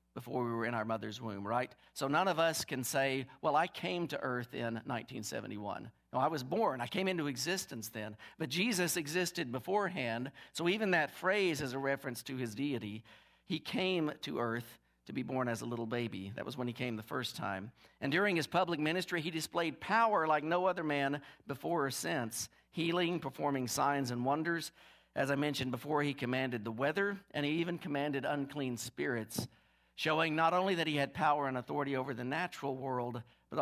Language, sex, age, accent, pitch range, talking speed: English, male, 50-69, American, 120-160 Hz, 200 wpm